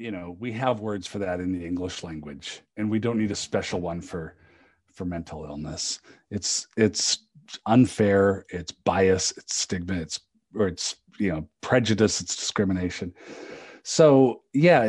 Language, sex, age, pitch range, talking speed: English, male, 40-59, 100-130 Hz, 155 wpm